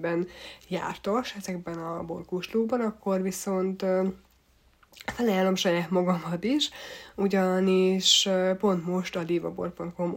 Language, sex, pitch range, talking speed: Hungarian, female, 175-195 Hz, 90 wpm